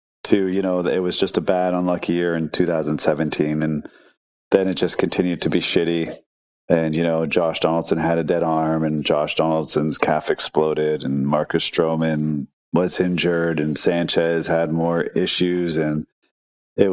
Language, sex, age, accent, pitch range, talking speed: English, male, 30-49, American, 80-95 Hz, 165 wpm